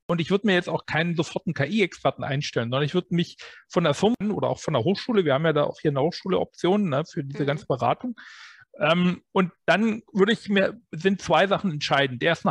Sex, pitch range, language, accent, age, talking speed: male, 145-180 Hz, German, German, 40-59, 215 wpm